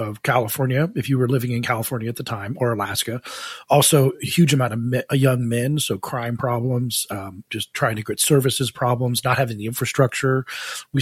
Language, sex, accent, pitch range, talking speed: English, male, American, 115-140 Hz, 190 wpm